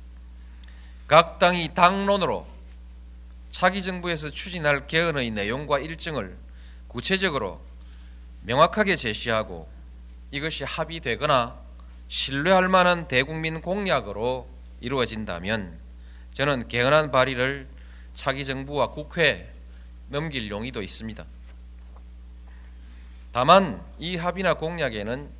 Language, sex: Korean, male